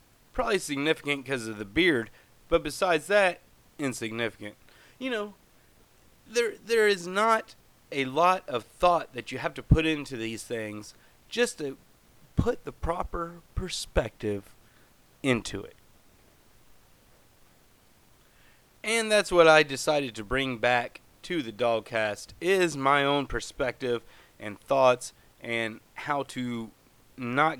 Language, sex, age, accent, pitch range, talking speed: English, male, 30-49, American, 115-160 Hz, 125 wpm